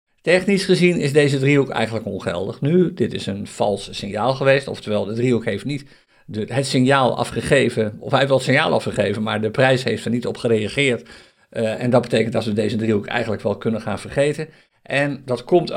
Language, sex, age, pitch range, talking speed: Dutch, male, 50-69, 110-145 Hz, 200 wpm